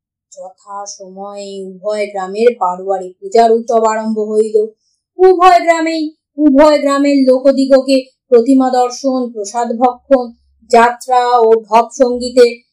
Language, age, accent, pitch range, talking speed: Bengali, 30-49, native, 235-360 Hz, 80 wpm